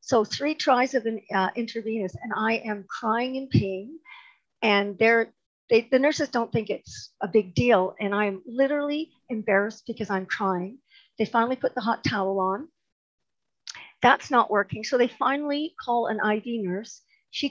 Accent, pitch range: American, 205-255 Hz